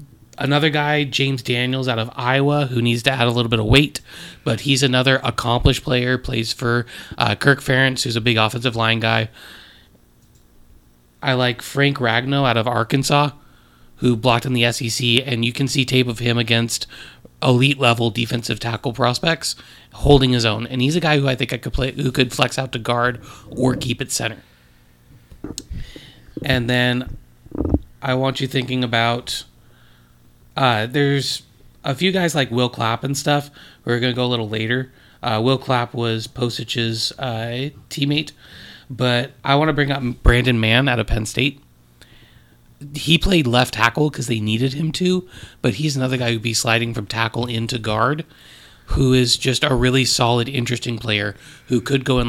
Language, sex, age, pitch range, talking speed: English, male, 30-49, 115-135 Hz, 180 wpm